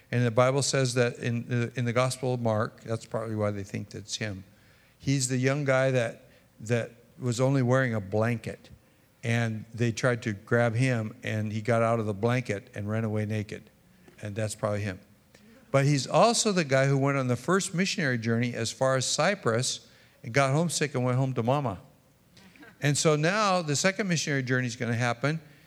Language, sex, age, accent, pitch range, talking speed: English, male, 60-79, American, 110-135 Hz, 200 wpm